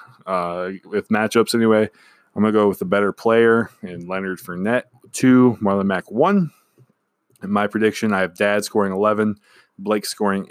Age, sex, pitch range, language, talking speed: 20-39, male, 100-115 Hz, English, 165 wpm